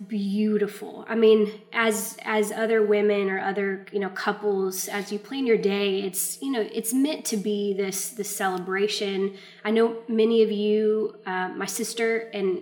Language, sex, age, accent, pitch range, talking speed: English, female, 20-39, American, 195-220 Hz, 170 wpm